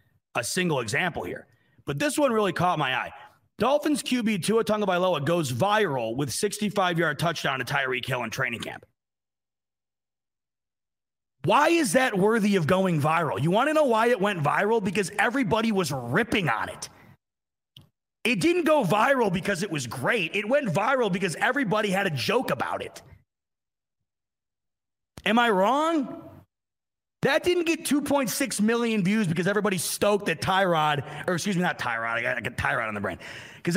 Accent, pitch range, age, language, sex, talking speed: American, 165-240 Hz, 30-49, English, male, 165 wpm